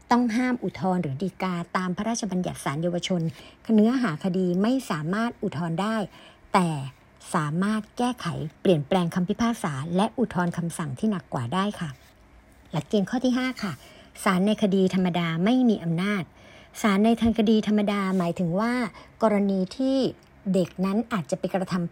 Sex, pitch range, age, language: male, 170-225 Hz, 60-79, Thai